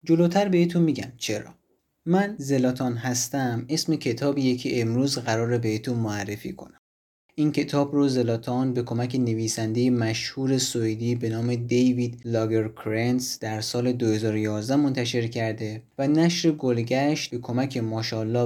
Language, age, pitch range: Persian, 30-49, 115-145 Hz